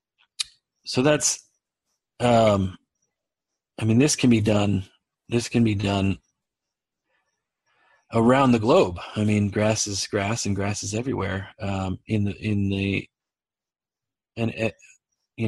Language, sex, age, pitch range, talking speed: English, male, 40-59, 100-115 Hz, 140 wpm